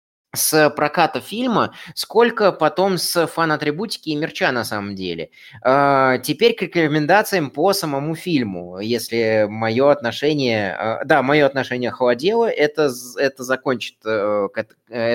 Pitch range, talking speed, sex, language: 125-165 Hz, 125 wpm, male, Russian